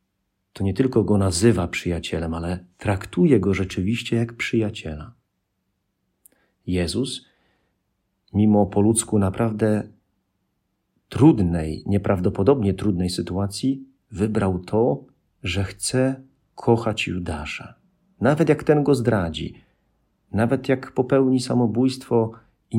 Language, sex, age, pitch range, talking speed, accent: Polish, male, 40-59, 95-115 Hz, 95 wpm, native